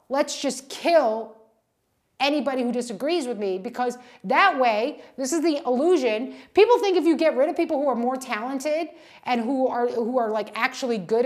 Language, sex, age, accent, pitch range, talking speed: English, female, 30-49, American, 265-360 Hz, 185 wpm